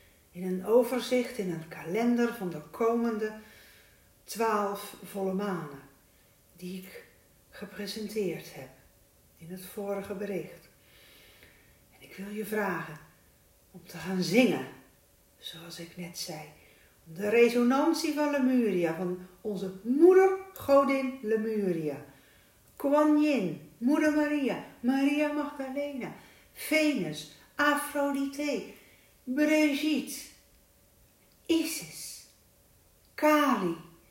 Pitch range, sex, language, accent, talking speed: 180-280 Hz, female, Dutch, Dutch, 95 wpm